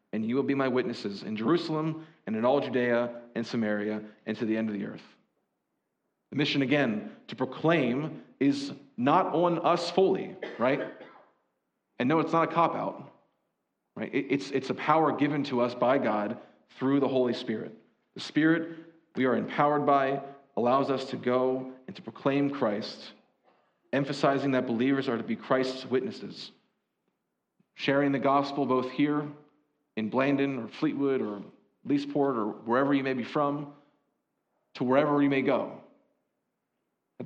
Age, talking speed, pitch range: 40-59, 155 wpm, 125-150 Hz